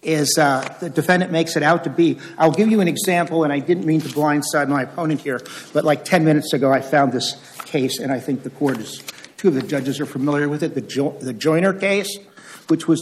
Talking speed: 240 wpm